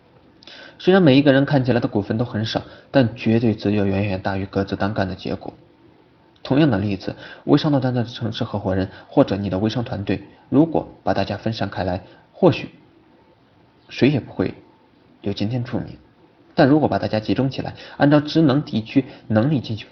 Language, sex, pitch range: Chinese, male, 100-130 Hz